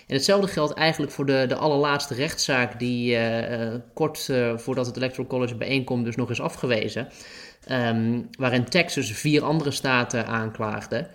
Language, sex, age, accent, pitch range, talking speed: Dutch, male, 20-39, Dutch, 120-145 Hz, 150 wpm